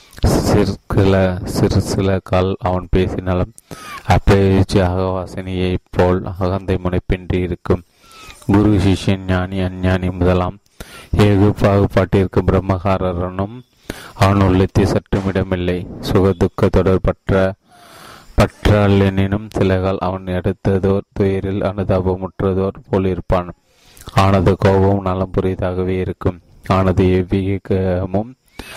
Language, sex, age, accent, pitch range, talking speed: Tamil, male, 30-49, native, 90-100 Hz, 75 wpm